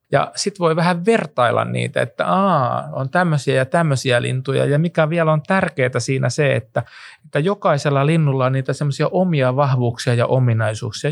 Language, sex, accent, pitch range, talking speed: Finnish, male, native, 125-160 Hz, 160 wpm